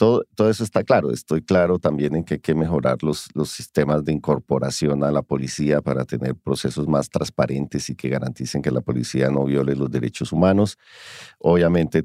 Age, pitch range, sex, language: 50-69, 75-100 Hz, male, English